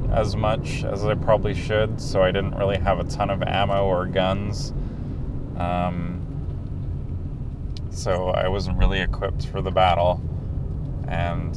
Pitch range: 90-100 Hz